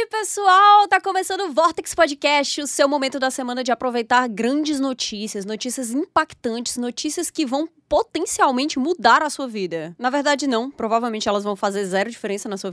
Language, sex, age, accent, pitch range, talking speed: Portuguese, female, 20-39, Brazilian, 230-315 Hz, 175 wpm